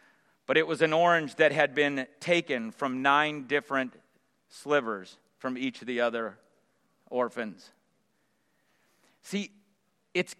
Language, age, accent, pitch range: English, 40-59, American, 155-225 Hz